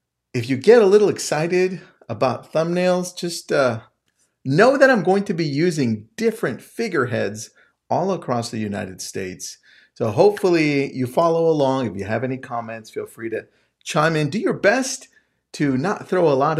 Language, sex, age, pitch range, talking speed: English, male, 40-59, 120-185 Hz, 170 wpm